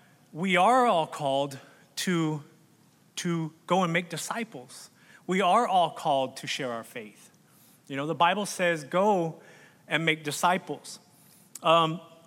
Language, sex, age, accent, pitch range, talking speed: English, male, 30-49, American, 140-185 Hz, 135 wpm